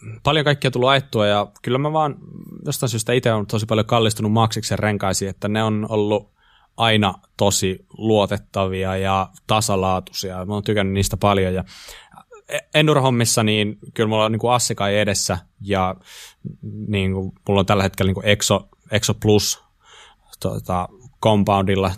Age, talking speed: 20-39, 145 wpm